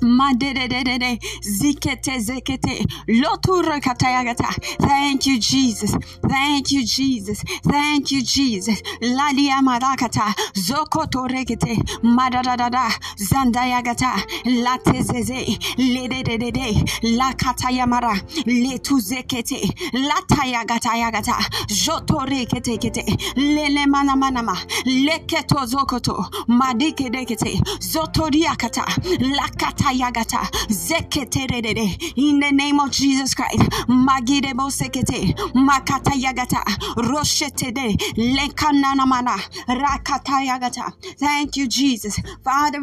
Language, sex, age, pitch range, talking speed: English, female, 30-49, 240-275 Hz, 95 wpm